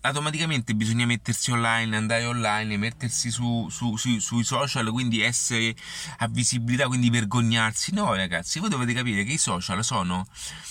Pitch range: 105-130 Hz